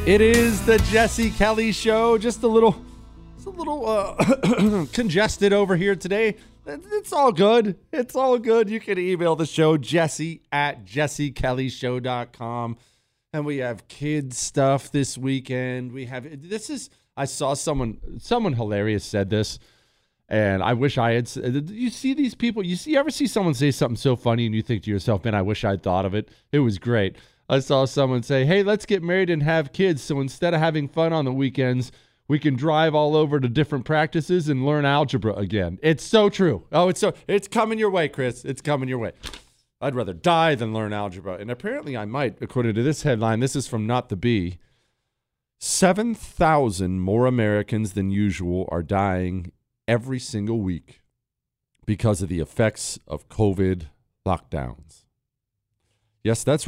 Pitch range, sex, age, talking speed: 115-180 Hz, male, 30-49, 180 wpm